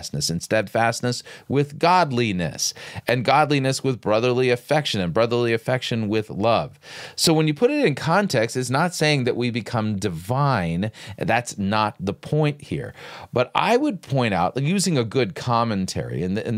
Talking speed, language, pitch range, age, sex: 165 wpm, English, 100-145 Hz, 40-59, male